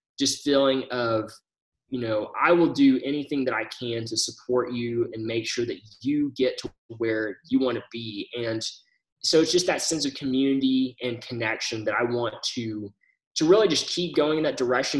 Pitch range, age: 125-165 Hz, 20-39